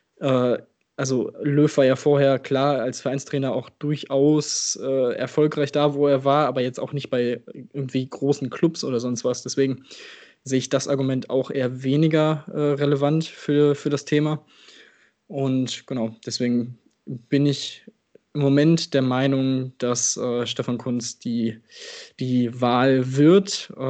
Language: German